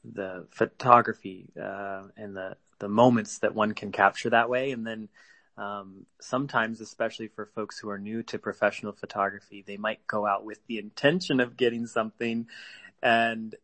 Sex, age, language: male, 30-49, English